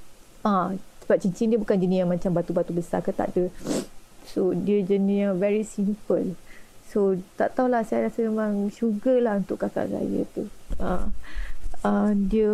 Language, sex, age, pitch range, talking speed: Malay, female, 20-39, 190-230 Hz, 165 wpm